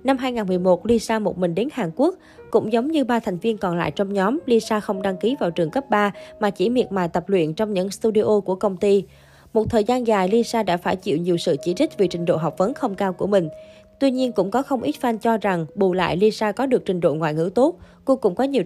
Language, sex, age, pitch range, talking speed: Vietnamese, female, 20-39, 180-235 Hz, 265 wpm